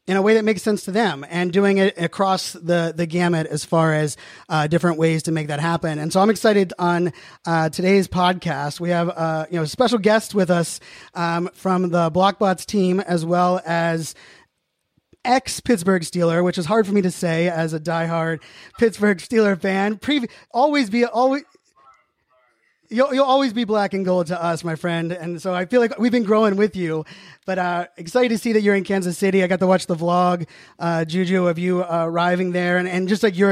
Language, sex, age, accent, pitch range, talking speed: English, male, 30-49, American, 170-205 Hz, 215 wpm